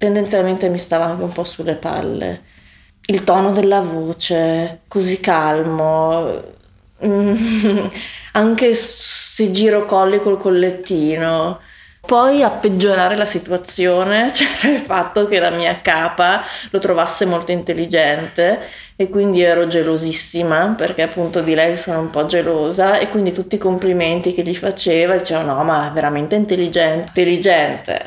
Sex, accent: female, native